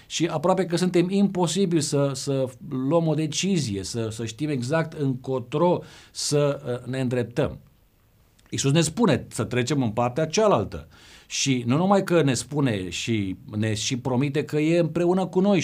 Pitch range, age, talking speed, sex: 120-160 Hz, 50-69, 155 wpm, male